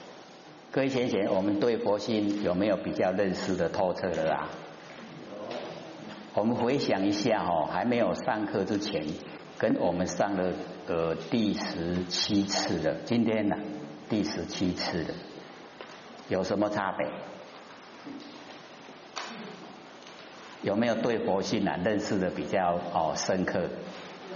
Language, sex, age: Chinese, male, 50-69